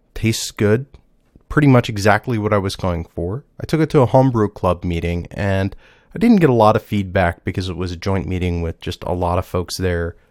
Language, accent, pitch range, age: English, American, 90-115 Hz, 30-49